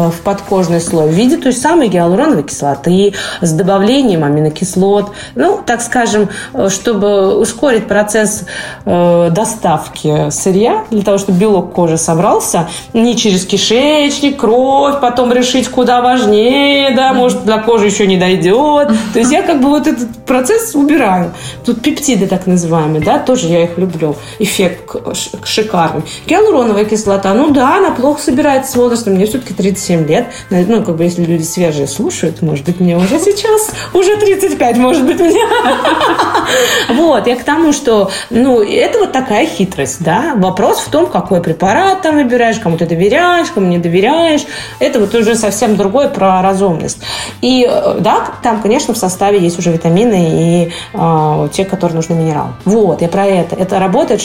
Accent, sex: native, female